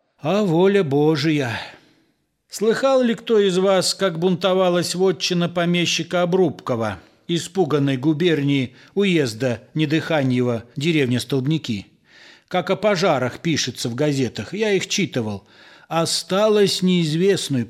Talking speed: 100 wpm